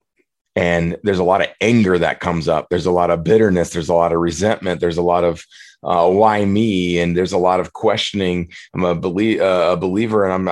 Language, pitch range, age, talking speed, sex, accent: English, 90-115 Hz, 30-49, 215 wpm, male, American